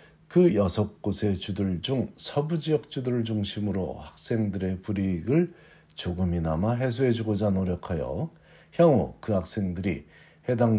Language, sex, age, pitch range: Korean, male, 50-69, 95-125 Hz